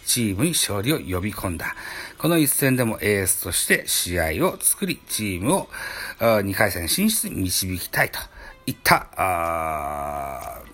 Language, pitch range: Japanese, 100-165 Hz